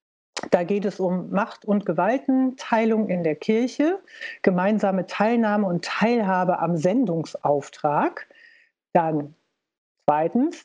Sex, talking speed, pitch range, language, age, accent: female, 105 wpm, 185-240 Hz, German, 60-79, German